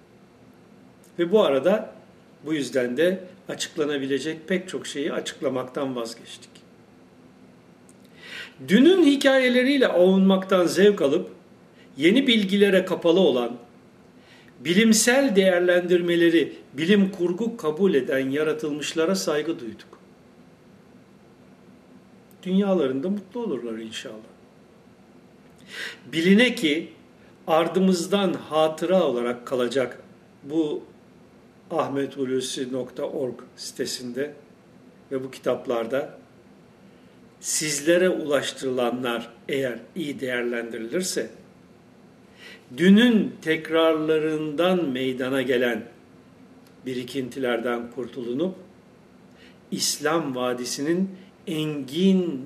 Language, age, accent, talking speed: Turkish, 60-79, native, 70 wpm